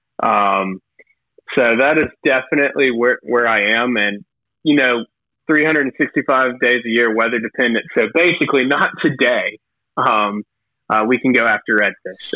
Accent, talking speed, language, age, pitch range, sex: American, 140 wpm, English, 20-39, 105-120 Hz, male